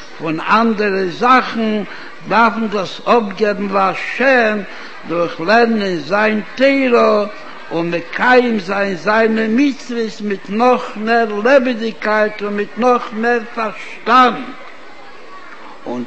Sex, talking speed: male, 105 wpm